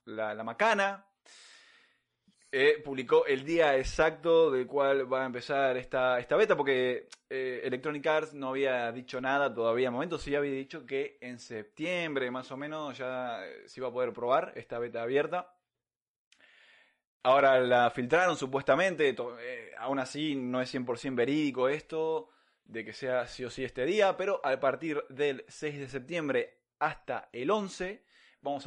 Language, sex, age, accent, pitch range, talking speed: Spanish, male, 20-39, Argentinian, 125-165 Hz, 160 wpm